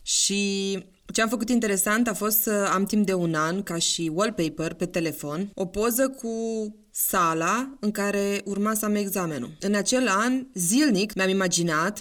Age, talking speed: 20-39, 165 wpm